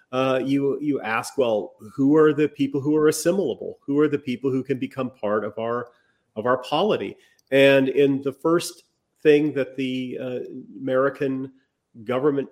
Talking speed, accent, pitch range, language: 170 wpm, American, 125-155 Hz, English